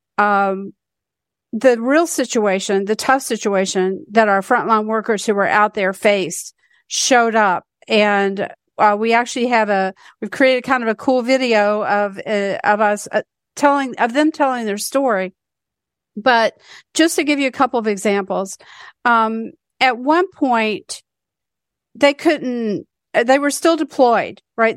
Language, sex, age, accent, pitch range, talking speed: English, female, 50-69, American, 210-265 Hz, 150 wpm